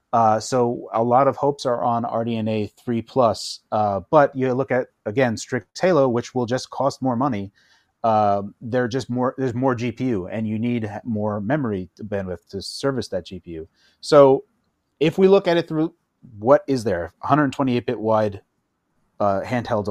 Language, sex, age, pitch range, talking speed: English, male, 30-49, 110-145 Hz, 170 wpm